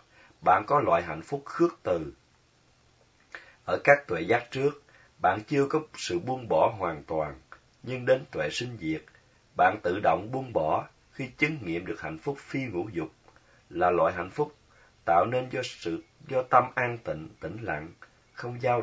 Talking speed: 175 wpm